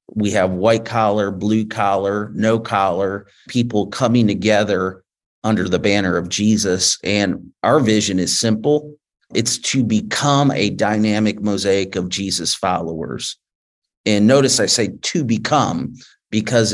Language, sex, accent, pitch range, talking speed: English, male, American, 100-120 Hz, 135 wpm